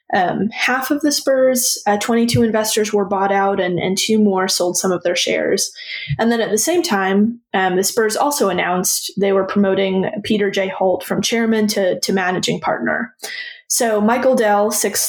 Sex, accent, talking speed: female, American, 185 wpm